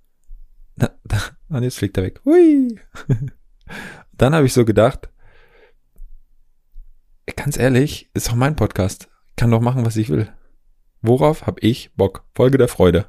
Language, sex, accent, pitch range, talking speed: German, male, German, 100-125 Hz, 135 wpm